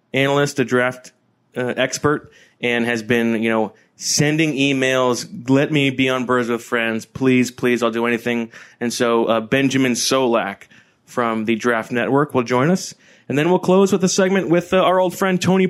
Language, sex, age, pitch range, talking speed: English, male, 30-49, 120-170 Hz, 185 wpm